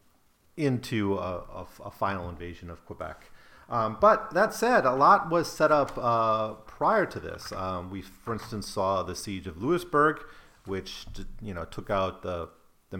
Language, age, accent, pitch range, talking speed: English, 40-59, American, 90-115 Hz, 165 wpm